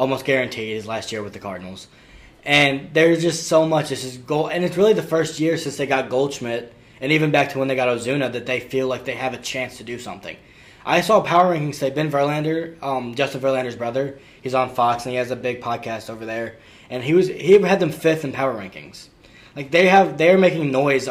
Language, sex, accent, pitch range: English, male, American, 120-150 Hz